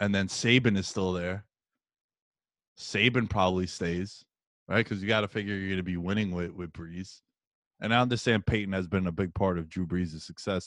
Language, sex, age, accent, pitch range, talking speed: English, male, 20-39, American, 95-115 Hz, 200 wpm